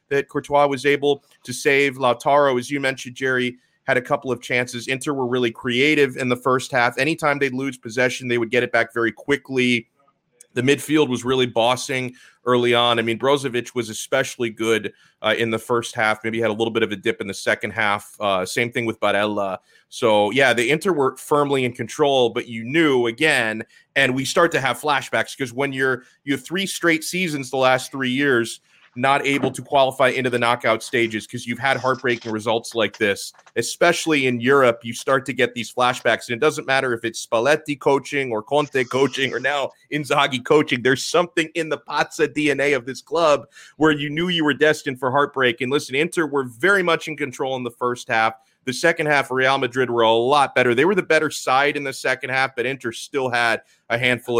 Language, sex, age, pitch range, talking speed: English, male, 30-49, 120-145 Hz, 210 wpm